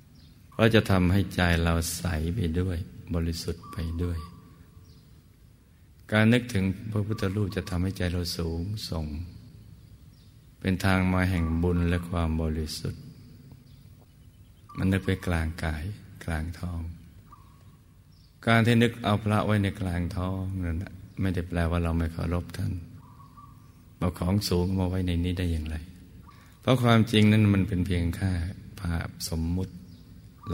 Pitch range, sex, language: 85-100 Hz, male, Thai